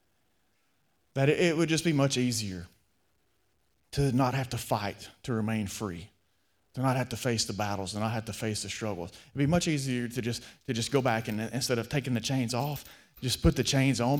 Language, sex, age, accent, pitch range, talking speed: English, male, 30-49, American, 105-130 Hz, 215 wpm